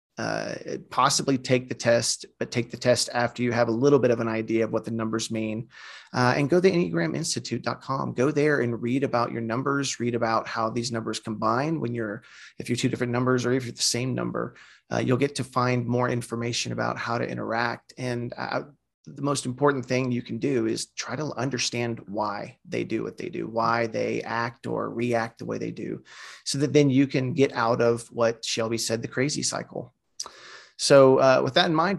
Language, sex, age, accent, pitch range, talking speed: English, male, 30-49, American, 115-135 Hz, 210 wpm